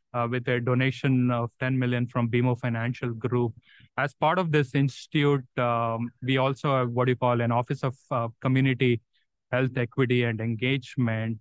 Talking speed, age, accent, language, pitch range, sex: 175 wpm, 20-39, Indian, English, 120-135 Hz, male